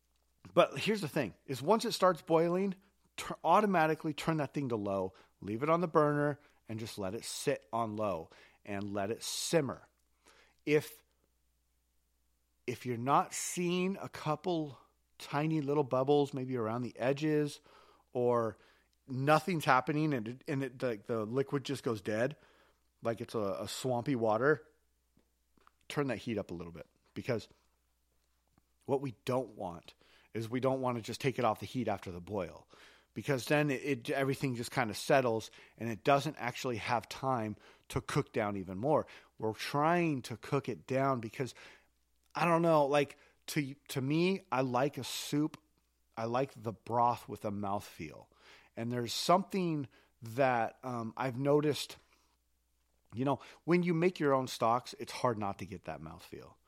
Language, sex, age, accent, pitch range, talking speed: English, male, 40-59, American, 105-145 Hz, 165 wpm